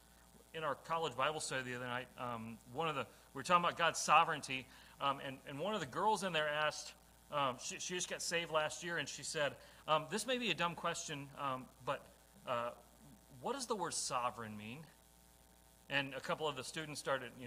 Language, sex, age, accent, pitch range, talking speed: English, male, 40-59, American, 120-190 Hz, 215 wpm